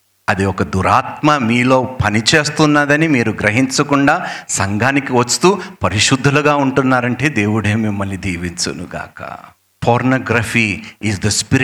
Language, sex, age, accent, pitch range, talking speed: Telugu, male, 50-69, native, 100-145 Hz, 95 wpm